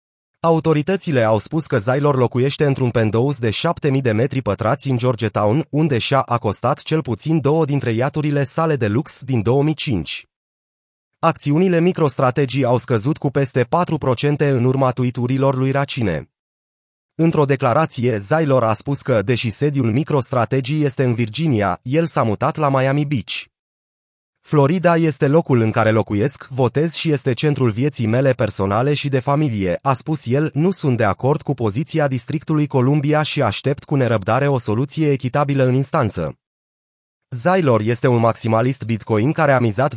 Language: Romanian